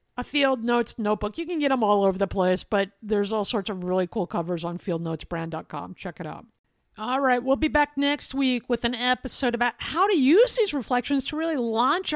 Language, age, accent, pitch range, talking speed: English, 50-69, American, 220-305 Hz, 215 wpm